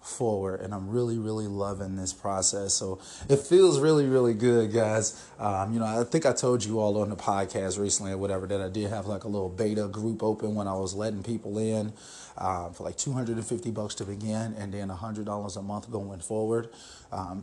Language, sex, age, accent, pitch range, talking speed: English, male, 30-49, American, 100-115 Hz, 210 wpm